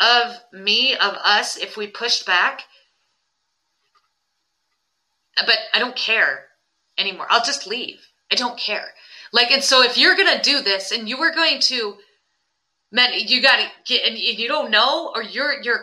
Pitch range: 210-265 Hz